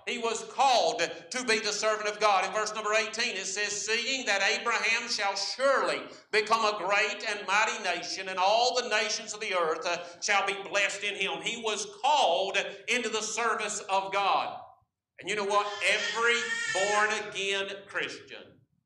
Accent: American